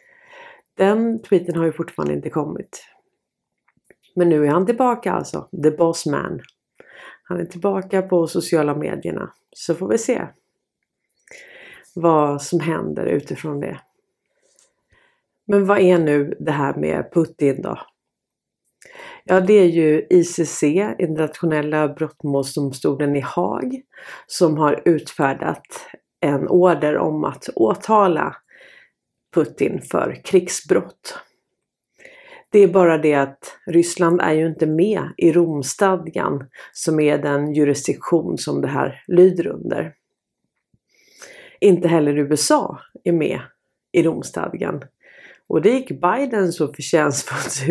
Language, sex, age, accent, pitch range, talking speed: Swedish, female, 30-49, native, 150-205 Hz, 120 wpm